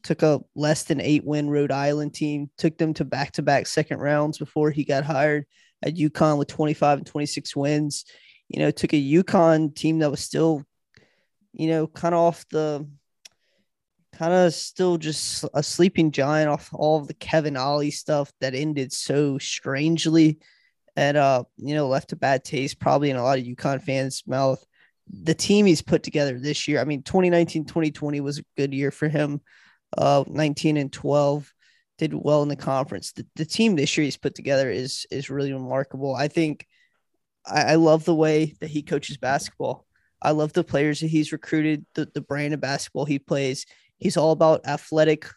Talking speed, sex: 190 wpm, male